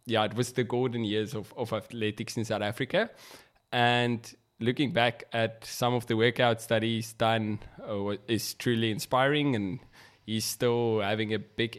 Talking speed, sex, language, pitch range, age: 170 wpm, male, English, 110-125 Hz, 20-39